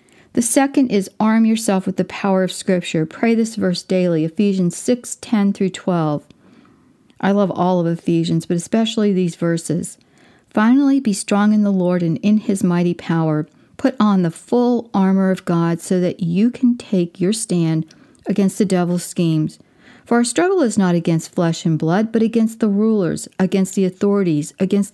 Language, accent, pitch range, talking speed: English, American, 175-225 Hz, 180 wpm